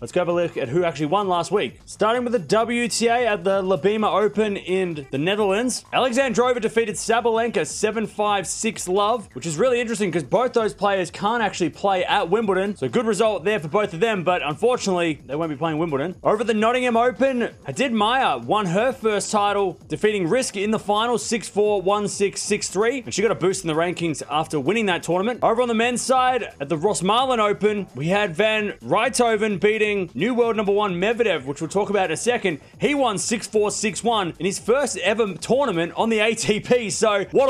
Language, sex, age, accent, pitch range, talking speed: English, male, 20-39, Australian, 180-225 Hz, 195 wpm